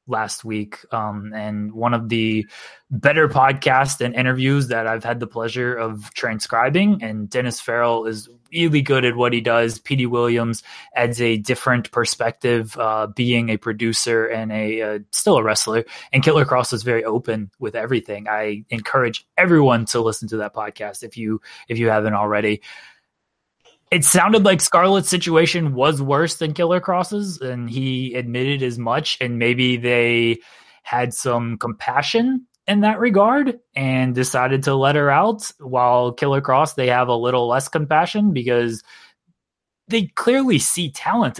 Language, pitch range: English, 115-150 Hz